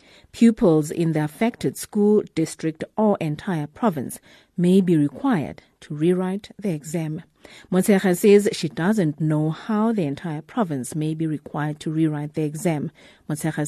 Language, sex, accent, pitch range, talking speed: English, female, South African, 155-195 Hz, 145 wpm